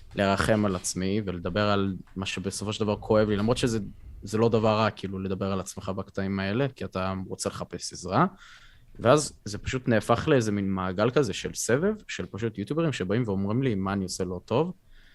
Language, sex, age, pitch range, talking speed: Hebrew, male, 20-39, 95-125 Hz, 190 wpm